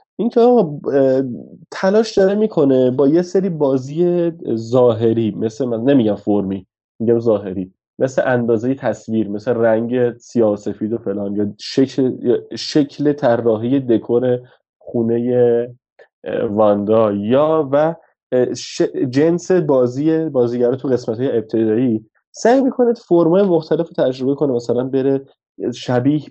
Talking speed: 115 wpm